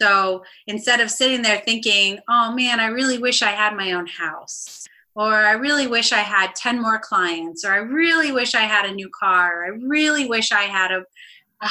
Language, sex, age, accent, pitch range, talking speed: English, female, 30-49, American, 195-240 Hz, 215 wpm